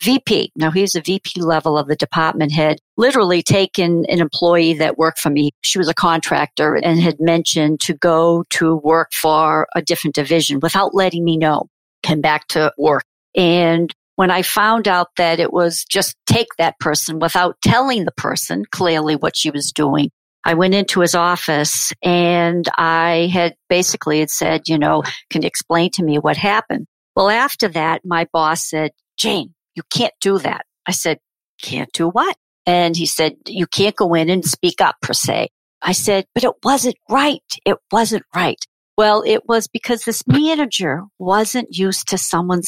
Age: 50-69